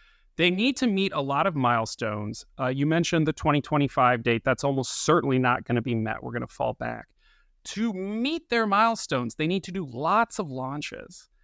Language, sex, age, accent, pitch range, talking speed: English, male, 30-49, American, 130-185 Hz, 200 wpm